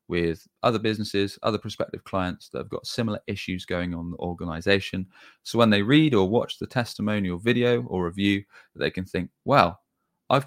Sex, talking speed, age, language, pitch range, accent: male, 190 wpm, 20-39, English, 90-115 Hz, British